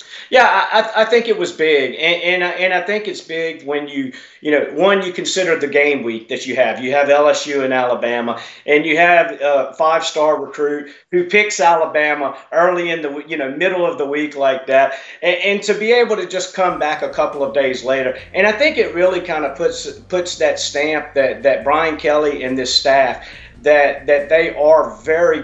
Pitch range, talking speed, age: 140-180 Hz, 215 wpm, 40-59